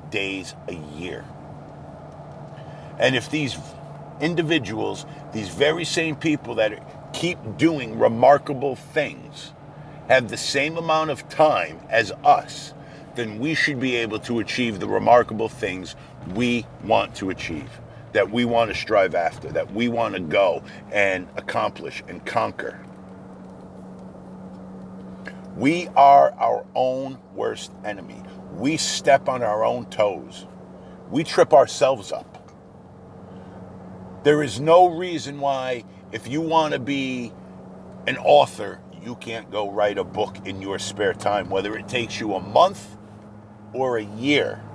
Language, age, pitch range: English, 50-69, 100-140 Hz